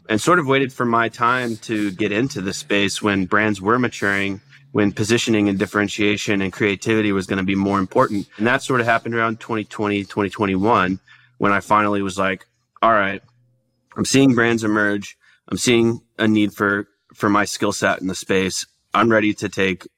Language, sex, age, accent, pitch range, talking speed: English, male, 30-49, American, 95-105 Hz, 190 wpm